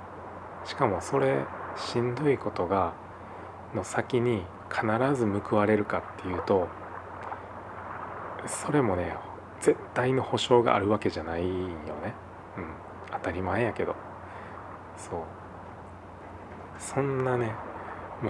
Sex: male